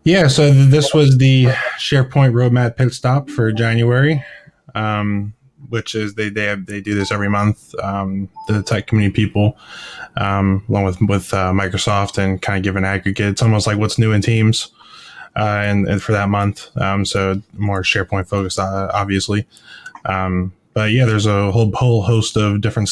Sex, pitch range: male, 100-115 Hz